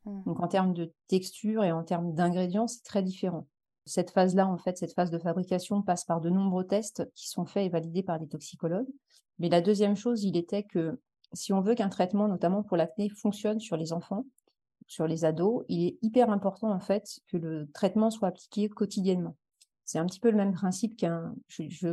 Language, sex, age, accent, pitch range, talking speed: French, female, 30-49, French, 175-205 Hz, 210 wpm